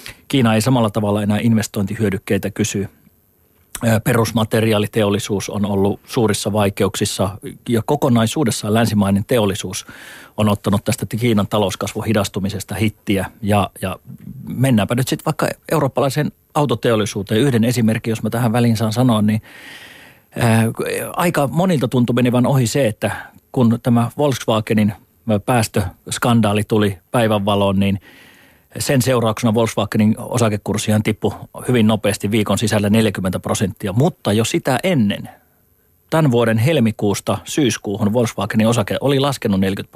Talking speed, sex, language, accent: 120 wpm, male, Finnish, native